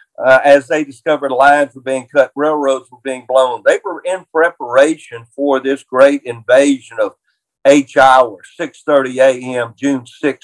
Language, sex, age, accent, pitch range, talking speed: English, male, 50-69, American, 140-180 Hz, 155 wpm